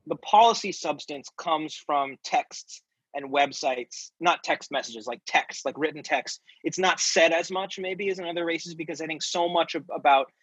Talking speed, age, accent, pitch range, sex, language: 185 wpm, 30-49, American, 135-175 Hz, male, English